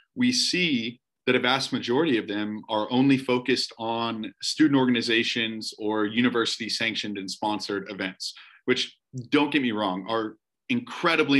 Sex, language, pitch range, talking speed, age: male, English, 110-130 Hz, 140 wpm, 30-49